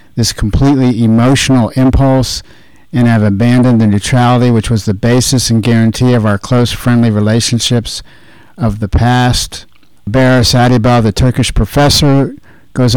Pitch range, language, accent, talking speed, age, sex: 115-130 Hz, English, American, 135 wpm, 50-69, male